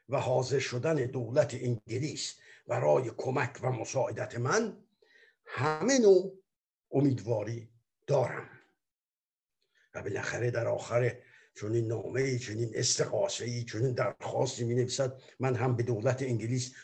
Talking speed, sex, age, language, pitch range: 115 wpm, male, 60-79, Persian, 120-155 Hz